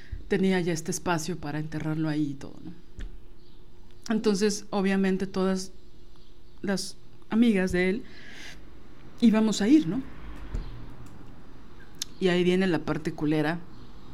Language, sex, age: Spanish, female, 50-69